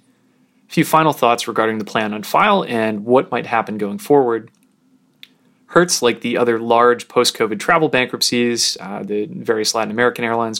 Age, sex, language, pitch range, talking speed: 30-49, male, English, 110-130 Hz, 165 wpm